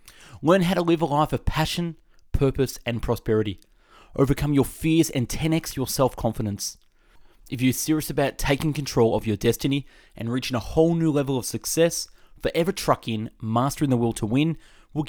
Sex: male